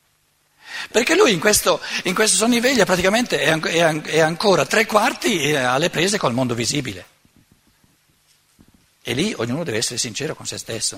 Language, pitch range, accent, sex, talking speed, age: Italian, 135-210 Hz, native, male, 140 wpm, 60-79